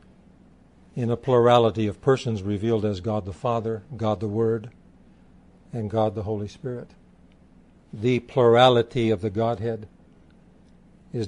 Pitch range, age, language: 110-125 Hz, 60-79, English